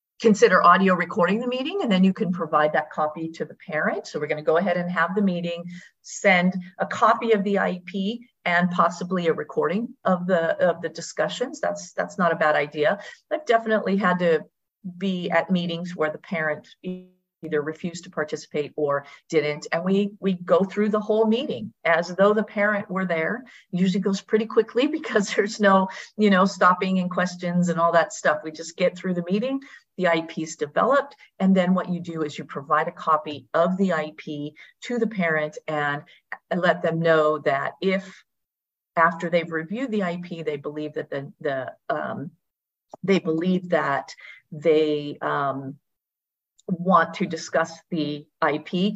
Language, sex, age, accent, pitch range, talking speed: English, female, 50-69, American, 160-200 Hz, 180 wpm